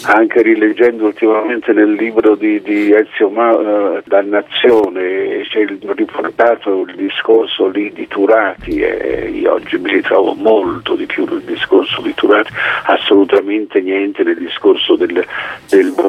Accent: native